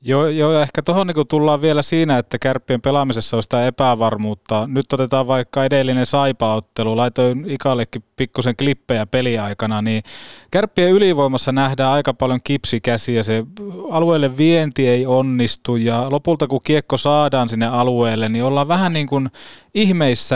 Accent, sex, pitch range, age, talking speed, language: native, male, 115-150 Hz, 20-39, 140 wpm, Finnish